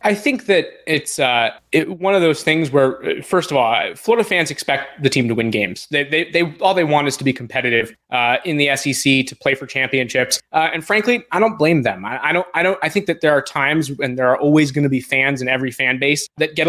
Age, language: 20-39, English